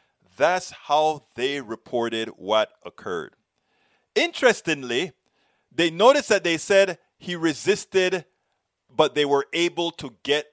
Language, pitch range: English, 150-190 Hz